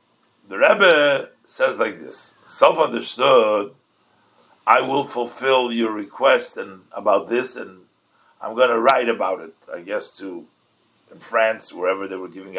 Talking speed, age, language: 145 wpm, 50-69, English